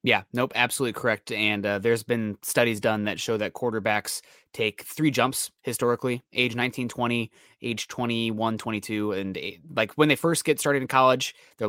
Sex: male